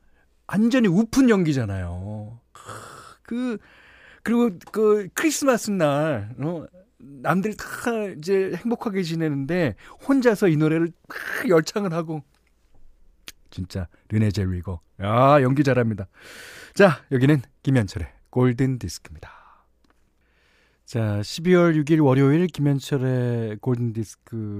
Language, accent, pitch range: Korean, native, 105-165 Hz